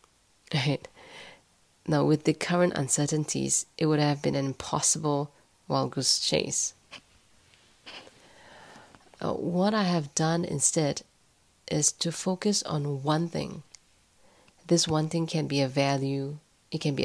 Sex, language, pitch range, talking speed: female, English, 140-175 Hz, 130 wpm